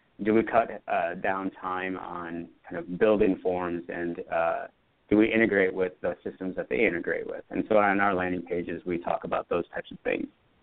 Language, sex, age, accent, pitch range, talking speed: English, male, 30-49, American, 90-110 Hz, 205 wpm